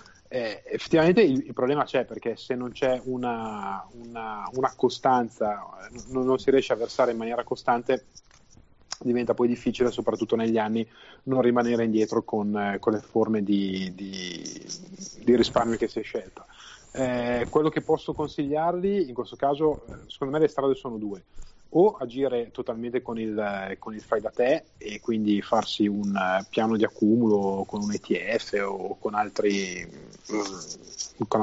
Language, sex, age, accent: Italian, male, 30-49, native